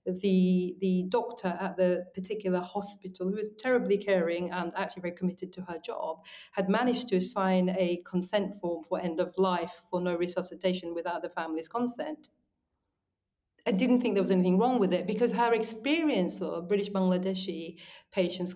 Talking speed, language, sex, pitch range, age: 170 wpm, English, female, 175-205 Hz, 40-59